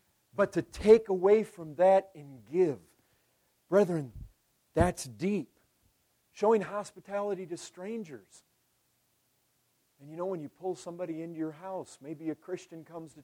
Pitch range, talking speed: 150-220 Hz, 135 wpm